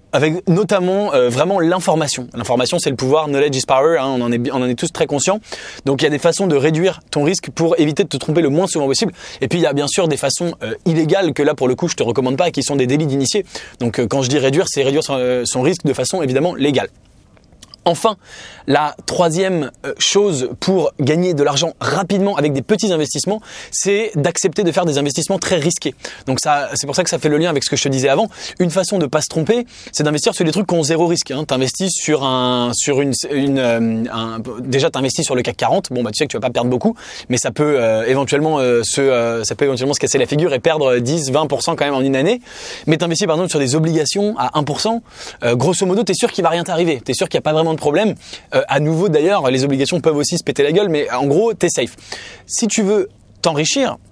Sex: male